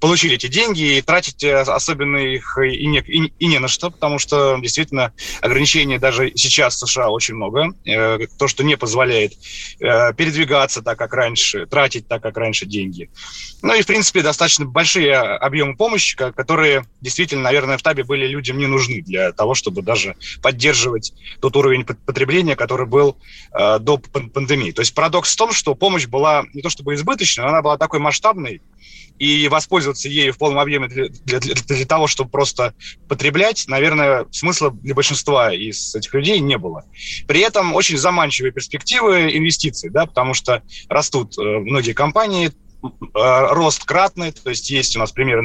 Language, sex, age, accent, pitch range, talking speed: Russian, male, 20-39, native, 125-160 Hz, 165 wpm